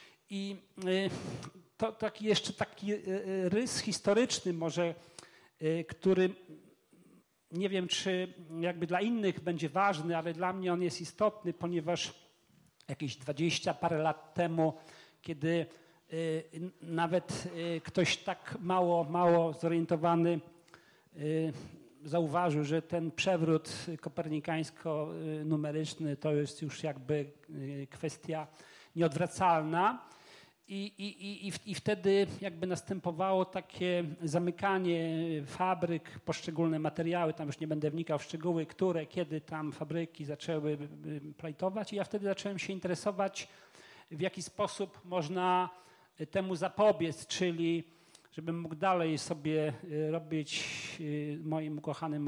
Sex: male